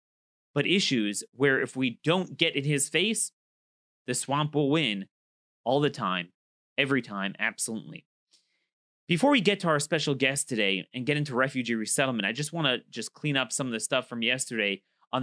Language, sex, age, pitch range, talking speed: English, male, 30-49, 125-180 Hz, 185 wpm